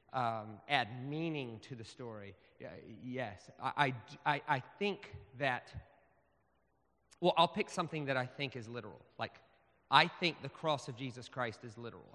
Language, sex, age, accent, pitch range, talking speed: English, male, 40-59, American, 115-155 Hz, 155 wpm